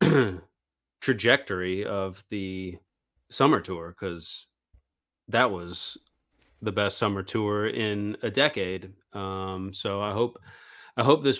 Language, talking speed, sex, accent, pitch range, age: English, 115 wpm, male, American, 100-120 Hz, 30-49